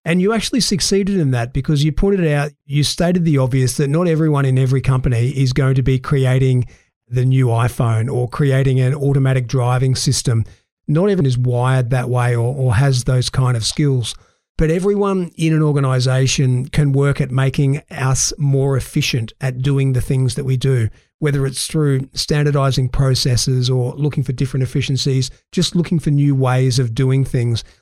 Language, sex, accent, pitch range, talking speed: English, male, Australian, 130-155 Hz, 180 wpm